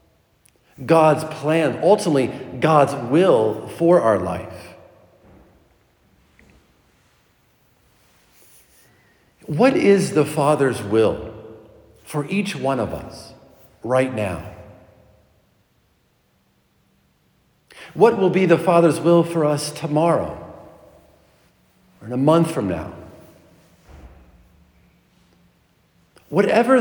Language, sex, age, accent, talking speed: English, male, 50-69, American, 80 wpm